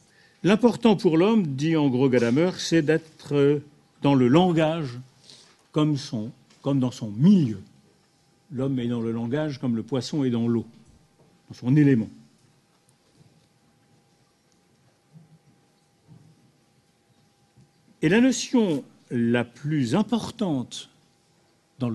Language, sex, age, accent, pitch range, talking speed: French, male, 50-69, French, 135-185 Hz, 105 wpm